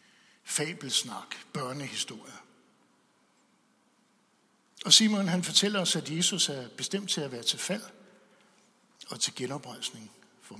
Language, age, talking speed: English, 60-79, 115 wpm